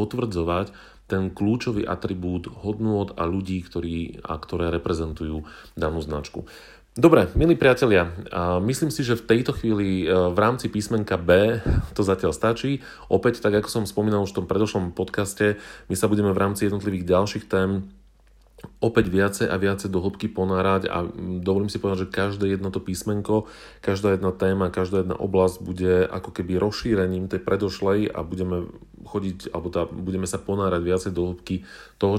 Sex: male